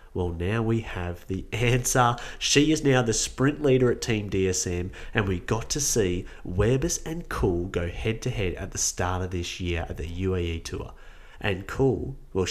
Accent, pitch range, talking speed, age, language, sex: Australian, 90-125 Hz, 190 wpm, 30-49, English, male